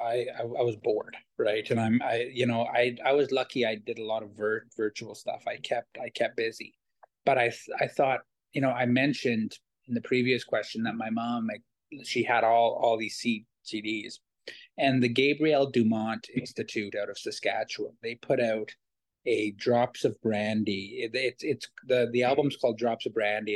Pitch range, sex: 105-125 Hz, male